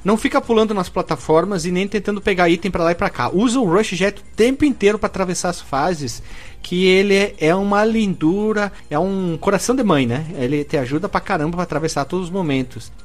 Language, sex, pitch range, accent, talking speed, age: Portuguese, male, 150-200 Hz, Brazilian, 220 wpm, 40-59